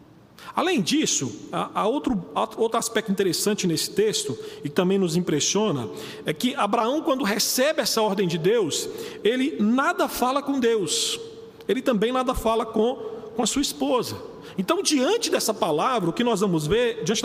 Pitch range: 215-280 Hz